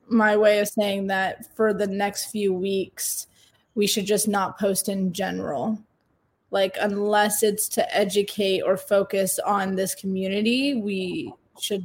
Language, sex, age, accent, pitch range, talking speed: English, female, 20-39, American, 190-215 Hz, 145 wpm